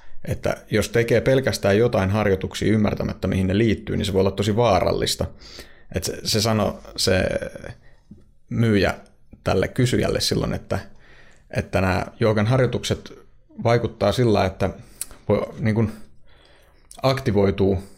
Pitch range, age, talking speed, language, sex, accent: 100-115 Hz, 30-49, 125 wpm, Finnish, male, native